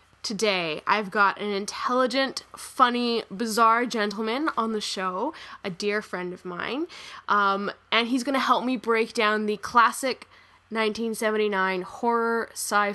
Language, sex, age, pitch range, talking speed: English, female, 10-29, 200-240 Hz, 130 wpm